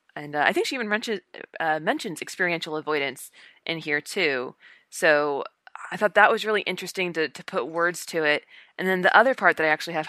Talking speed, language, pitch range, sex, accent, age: 215 wpm, English, 160-190 Hz, female, American, 20-39